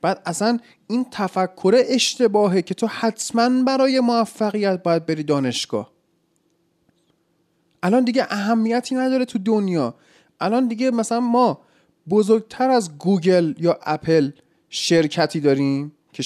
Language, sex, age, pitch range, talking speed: Persian, male, 30-49, 165-240 Hz, 115 wpm